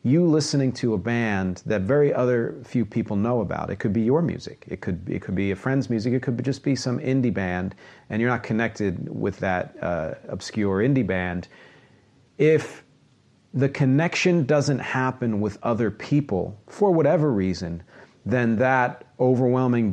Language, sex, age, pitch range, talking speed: English, male, 40-59, 100-130 Hz, 170 wpm